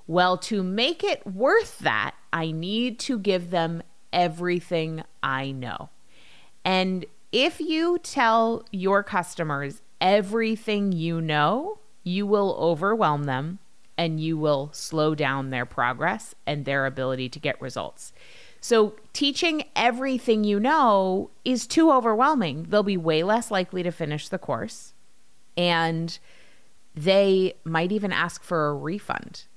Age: 30-49